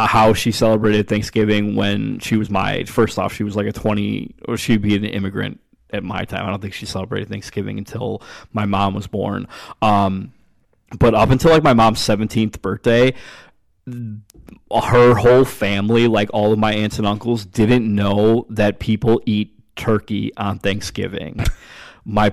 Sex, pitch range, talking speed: male, 105-115 Hz, 170 wpm